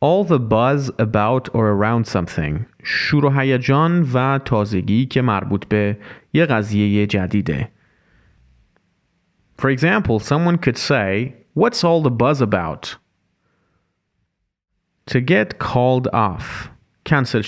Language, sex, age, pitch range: Persian, male, 30-49, 100-145 Hz